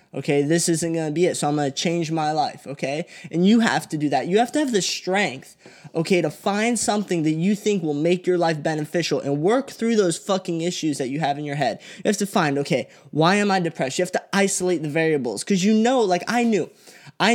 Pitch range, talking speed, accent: 150-190 Hz, 245 wpm, American